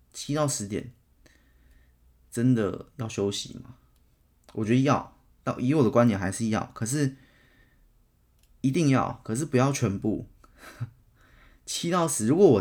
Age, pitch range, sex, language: 20-39, 85-125 Hz, male, Chinese